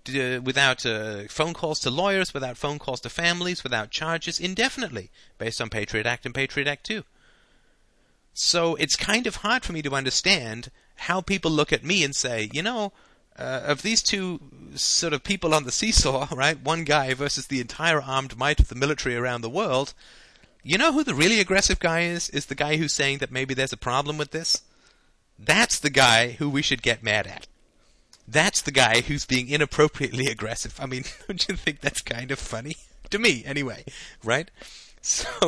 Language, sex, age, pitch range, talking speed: English, male, 30-49, 115-155 Hz, 195 wpm